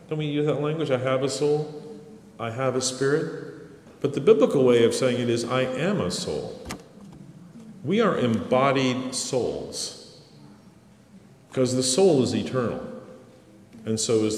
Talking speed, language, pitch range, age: 155 wpm, English, 125-165 Hz, 50-69